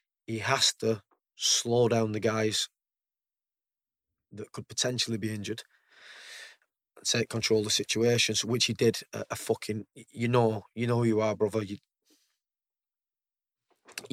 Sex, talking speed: male, 140 wpm